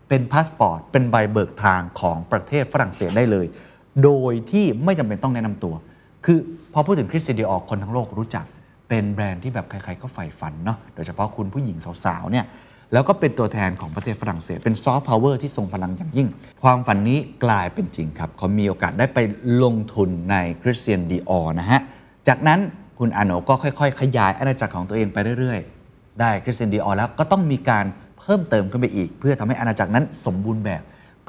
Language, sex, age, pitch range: Thai, male, 30-49, 95-125 Hz